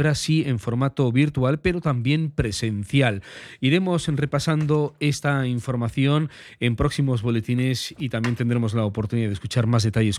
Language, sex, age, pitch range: Spanish, male, 40-59, 125-155 Hz